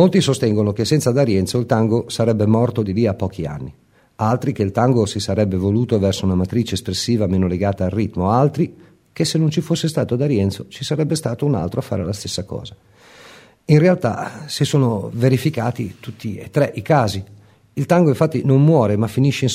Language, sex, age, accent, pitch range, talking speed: Italian, male, 50-69, native, 105-135 Hz, 200 wpm